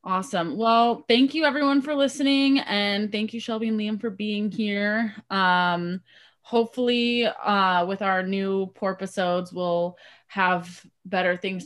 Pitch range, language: 180-215 Hz, English